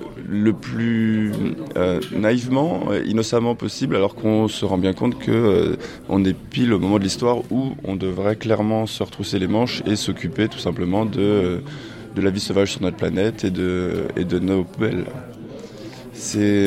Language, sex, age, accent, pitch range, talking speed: French, male, 20-39, French, 90-110 Hz, 175 wpm